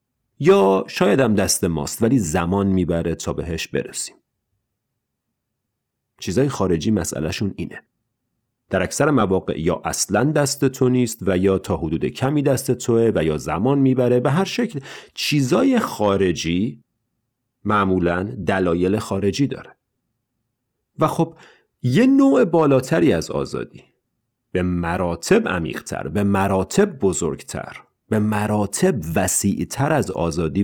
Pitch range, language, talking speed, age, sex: 90-130 Hz, Persian, 120 wpm, 40-59, male